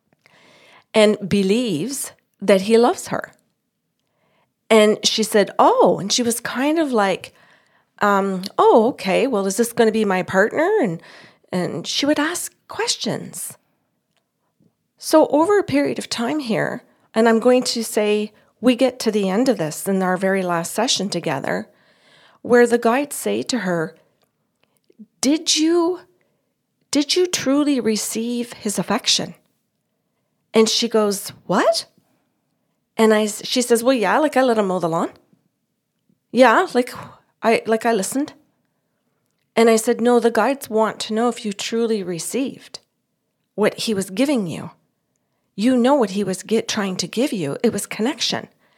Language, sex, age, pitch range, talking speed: English, female, 40-59, 200-255 Hz, 155 wpm